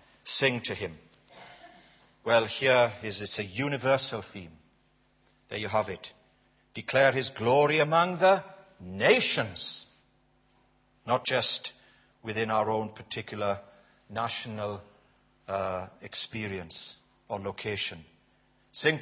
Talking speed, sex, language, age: 100 wpm, male, English, 60-79